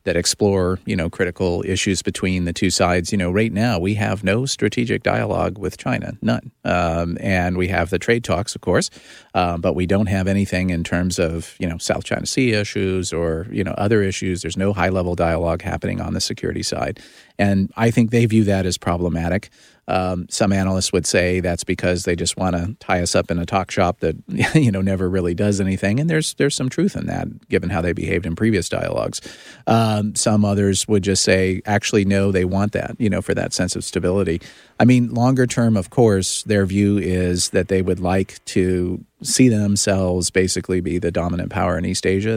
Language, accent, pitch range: English, American, 90-105 Hz